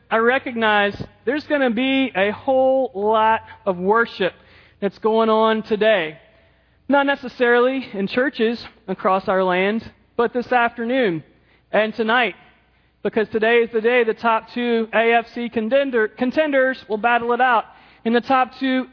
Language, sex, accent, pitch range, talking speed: English, male, American, 230-270 Hz, 145 wpm